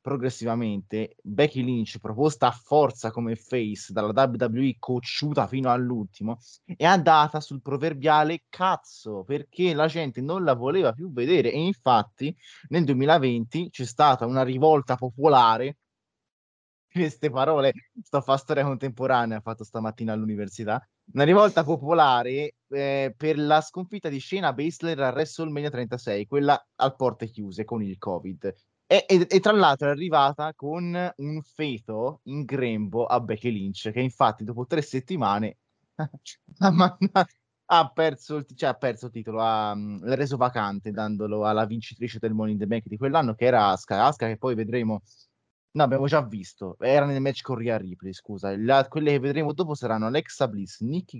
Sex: male